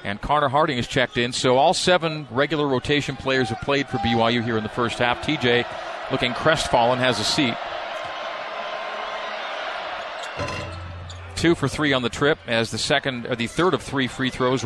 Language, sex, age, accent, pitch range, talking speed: English, male, 40-59, American, 120-150 Hz, 175 wpm